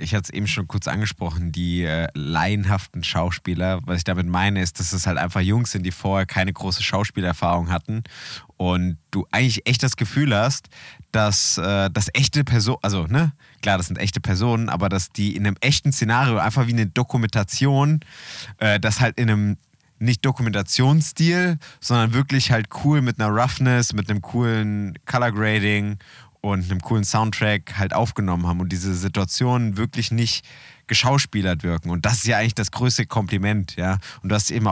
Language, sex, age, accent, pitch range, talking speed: German, male, 20-39, German, 95-120 Hz, 180 wpm